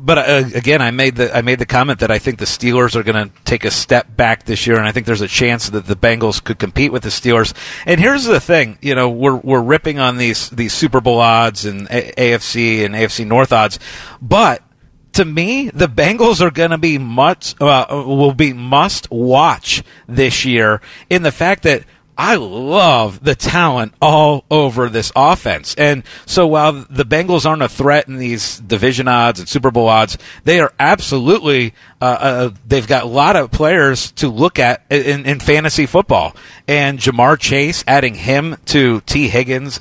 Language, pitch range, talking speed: English, 120-150 Hz, 195 wpm